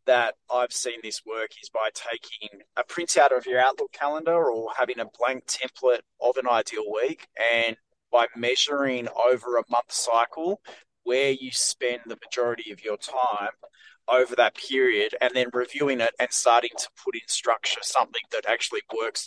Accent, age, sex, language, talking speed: Australian, 20-39, male, English, 170 wpm